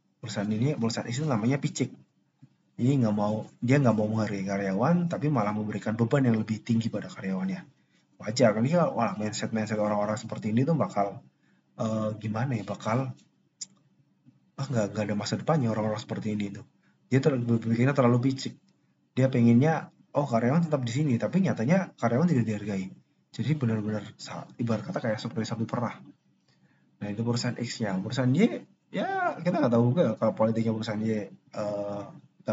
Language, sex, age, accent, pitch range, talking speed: Indonesian, male, 20-39, native, 110-140 Hz, 160 wpm